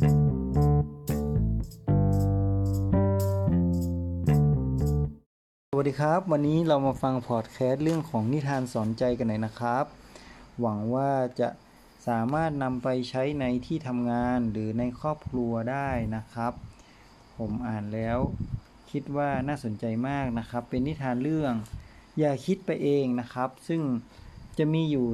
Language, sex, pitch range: Thai, male, 115-145 Hz